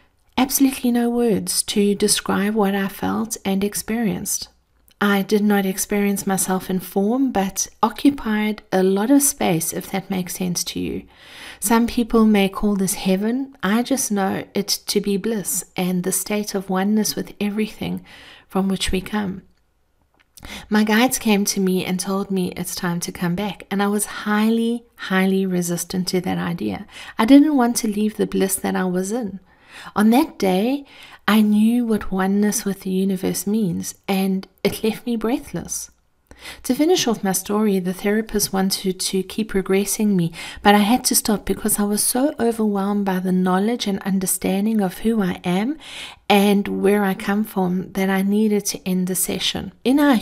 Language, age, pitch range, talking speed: English, 40-59, 190-220 Hz, 175 wpm